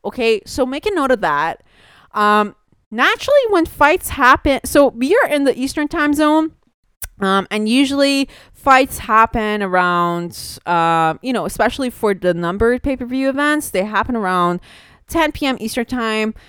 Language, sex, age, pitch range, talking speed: English, female, 20-39, 180-260 Hz, 155 wpm